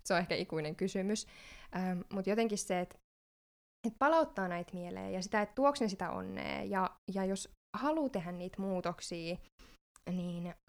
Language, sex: Finnish, female